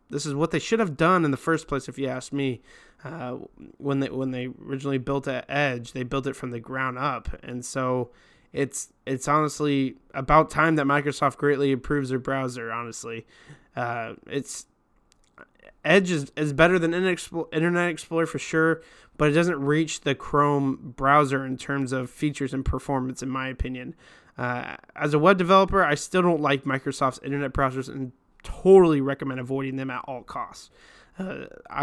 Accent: American